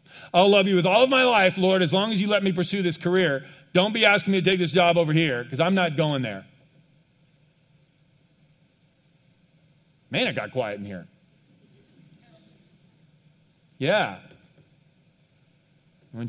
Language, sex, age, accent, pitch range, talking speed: English, male, 40-59, American, 135-165 Hz, 150 wpm